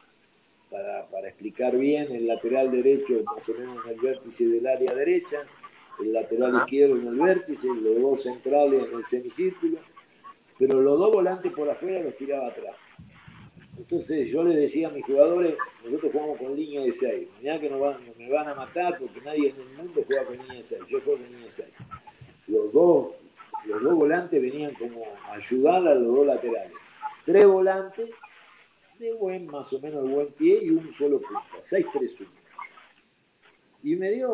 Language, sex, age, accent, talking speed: Spanish, male, 50-69, Argentinian, 185 wpm